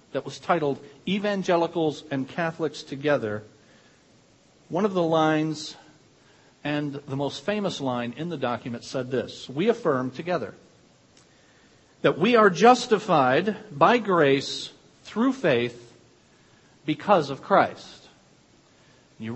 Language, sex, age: English, male, 50-69